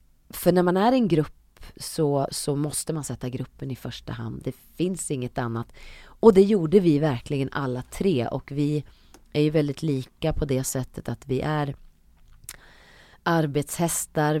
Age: 30-49